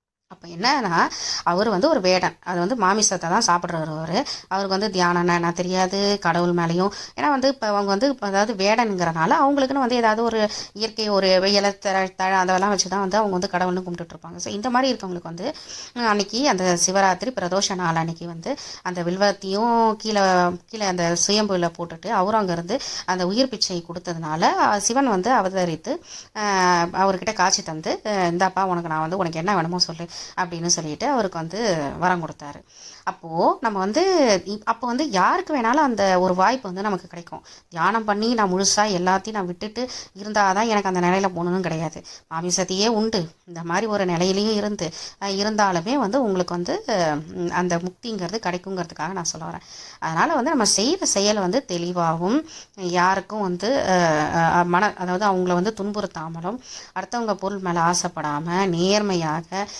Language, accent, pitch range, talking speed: Tamil, native, 175-210 Hz, 150 wpm